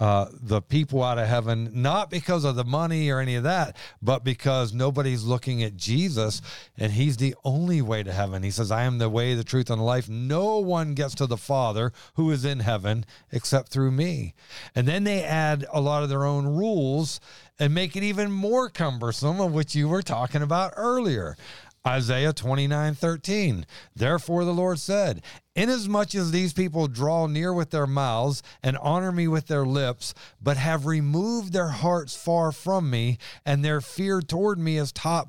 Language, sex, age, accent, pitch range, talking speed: English, male, 50-69, American, 130-175 Hz, 190 wpm